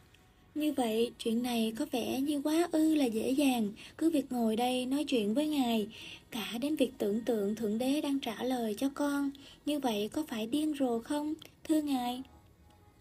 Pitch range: 230-295 Hz